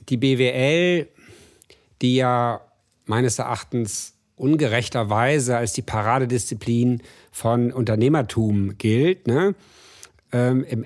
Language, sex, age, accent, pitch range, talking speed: German, male, 50-69, German, 115-135 Hz, 75 wpm